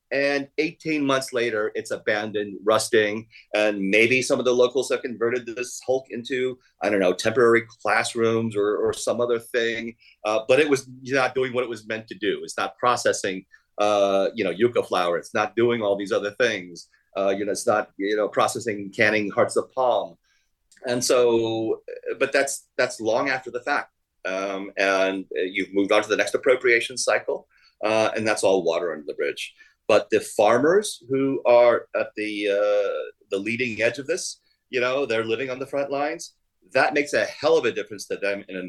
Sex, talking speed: male, 195 wpm